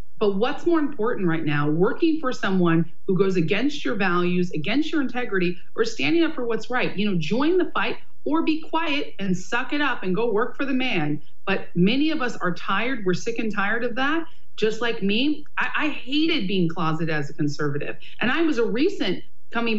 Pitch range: 175-245 Hz